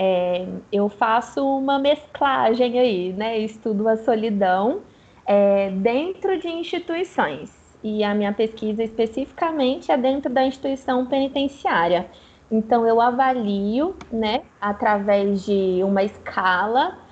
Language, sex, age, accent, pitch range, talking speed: Portuguese, female, 20-39, Brazilian, 210-275 Hz, 110 wpm